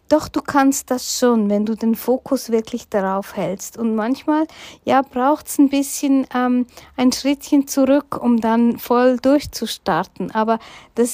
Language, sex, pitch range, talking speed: German, female, 215-255 Hz, 155 wpm